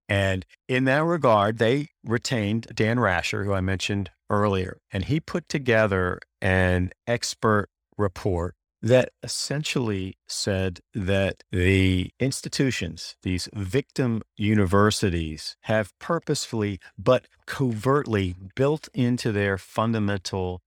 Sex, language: male, English